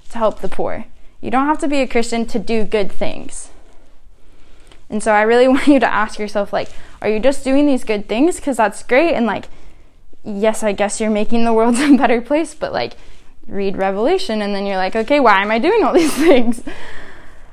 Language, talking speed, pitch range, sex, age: English, 215 wpm, 205-245 Hz, female, 10-29